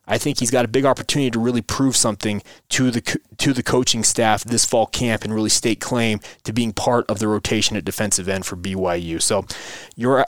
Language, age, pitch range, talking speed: English, 20-39, 110-135 Hz, 220 wpm